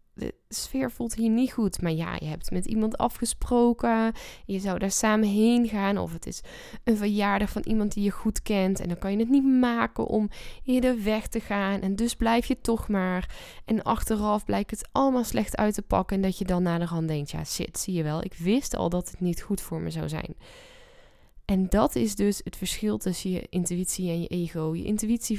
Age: 10-29